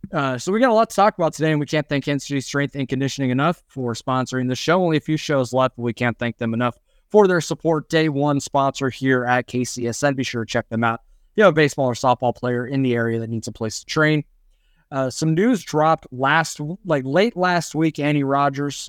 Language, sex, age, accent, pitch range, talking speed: English, male, 20-39, American, 120-155 Hz, 245 wpm